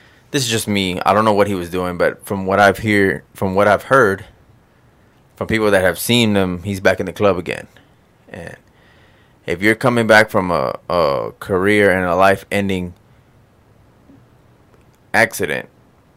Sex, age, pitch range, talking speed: male, 20-39, 95-110 Hz, 165 wpm